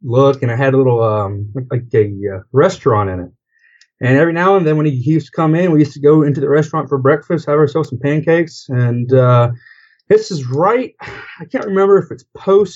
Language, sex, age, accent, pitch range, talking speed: English, male, 30-49, American, 115-150 Hz, 225 wpm